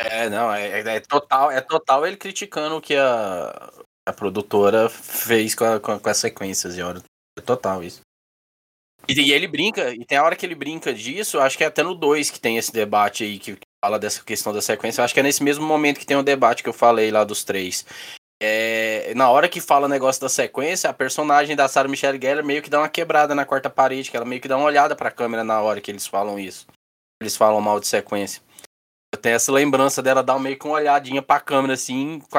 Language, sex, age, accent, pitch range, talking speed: Portuguese, male, 10-29, Brazilian, 115-145 Hz, 225 wpm